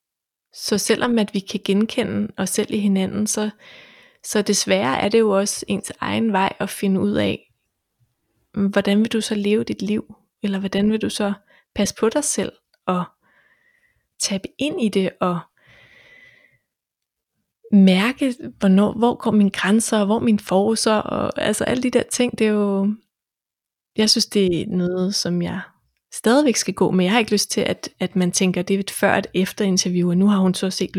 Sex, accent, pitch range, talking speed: female, native, 190-220 Hz, 190 wpm